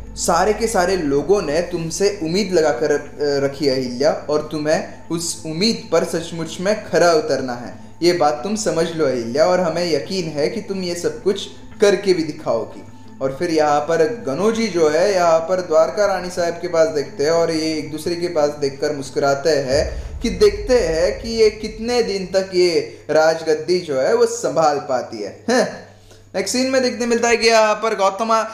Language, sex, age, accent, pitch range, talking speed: Hindi, male, 20-39, native, 150-200 Hz, 190 wpm